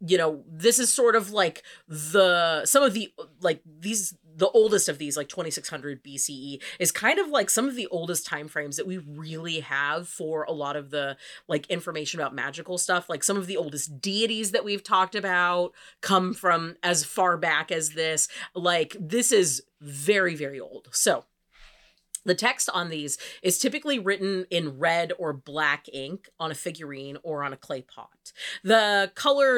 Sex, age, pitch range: female, 30-49, 150-195 Hz